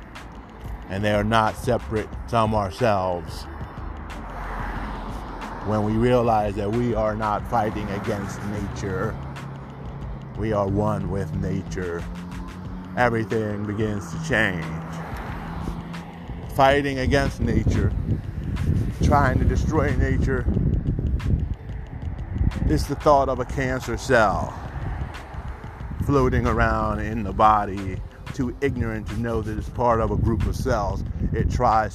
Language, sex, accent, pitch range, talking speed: English, male, American, 95-120 Hz, 110 wpm